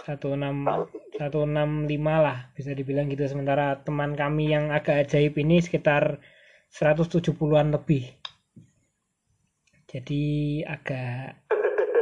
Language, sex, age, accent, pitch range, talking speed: Indonesian, male, 20-39, native, 145-180 Hz, 95 wpm